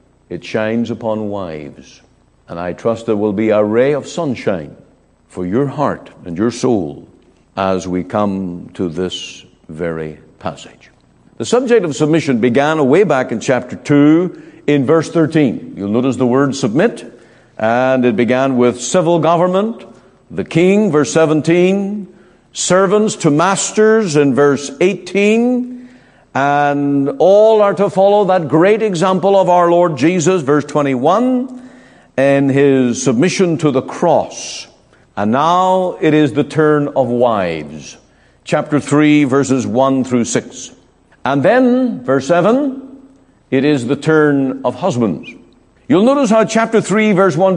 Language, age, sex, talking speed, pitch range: English, 50-69, male, 140 wpm, 130-195 Hz